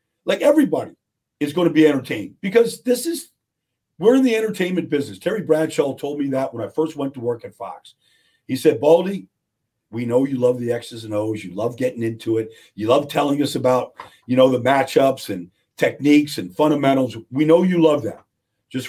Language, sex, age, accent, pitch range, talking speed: English, male, 50-69, American, 130-160 Hz, 200 wpm